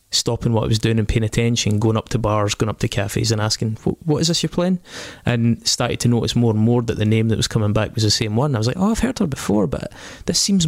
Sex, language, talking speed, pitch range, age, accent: male, English, 305 wpm, 110-125 Hz, 20-39, British